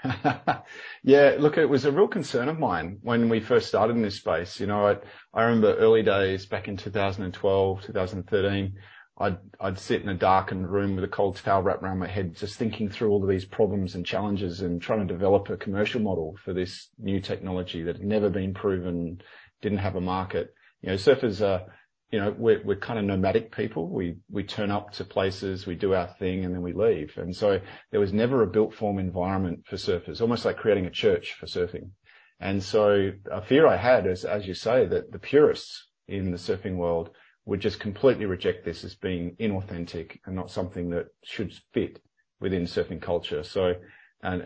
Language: English